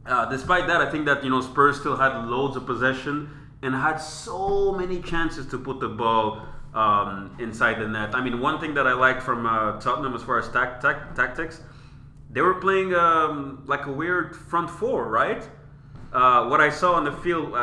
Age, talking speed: 30-49, 205 wpm